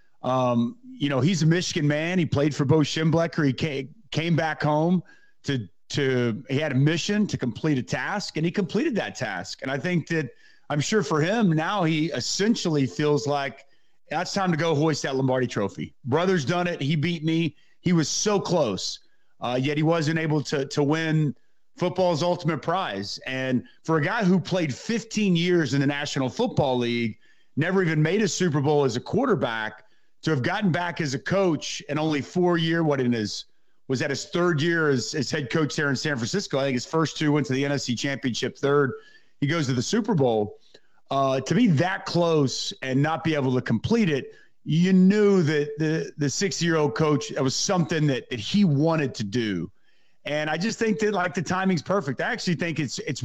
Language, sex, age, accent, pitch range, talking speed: English, male, 40-59, American, 135-175 Hz, 205 wpm